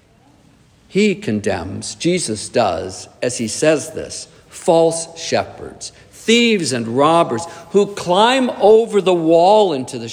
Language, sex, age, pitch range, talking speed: English, male, 50-69, 135-180 Hz, 120 wpm